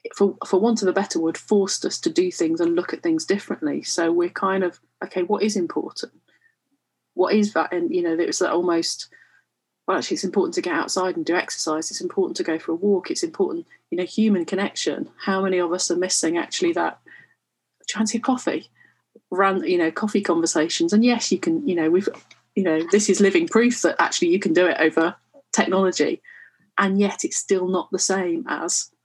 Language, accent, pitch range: English, British, 165-230 Hz